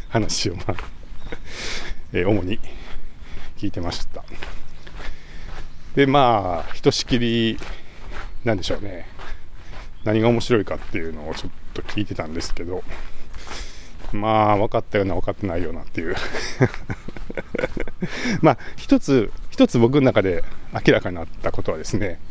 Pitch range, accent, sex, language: 90-130 Hz, native, male, Japanese